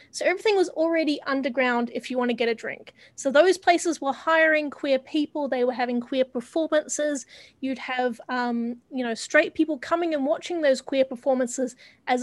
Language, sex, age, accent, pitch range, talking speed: English, female, 30-49, Australian, 245-300 Hz, 185 wpm